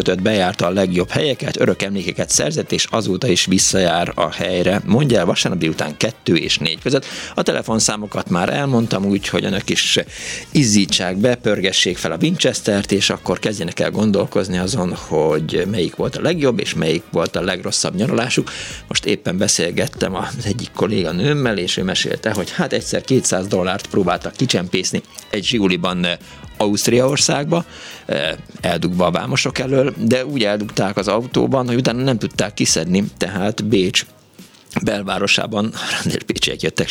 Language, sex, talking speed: Hungarian, male, 145 wpm